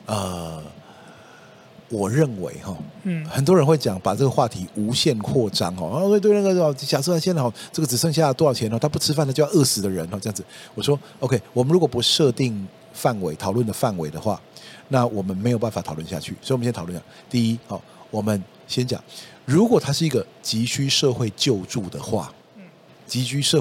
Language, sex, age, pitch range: Chinese, male, 50-69, 100-140 Hz